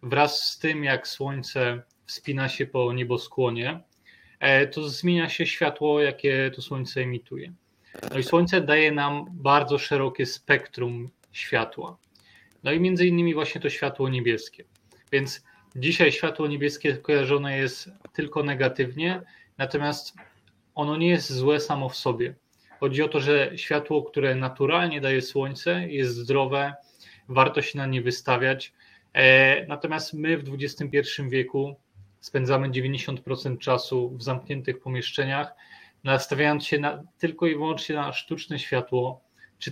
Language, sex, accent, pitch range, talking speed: Polish, male, native, 125-145 Hz, 130 wpm